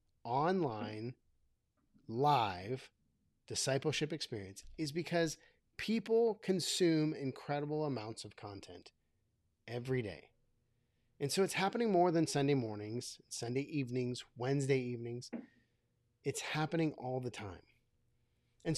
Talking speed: 100 wpm